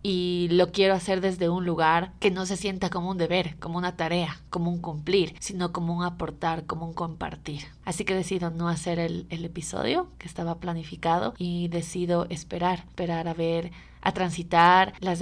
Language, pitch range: Spanish, 165-190 Hz